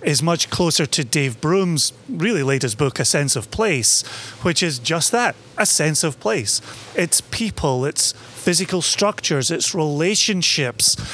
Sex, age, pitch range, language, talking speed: male, 30-49, 135-190 Hz, English, 150 wpm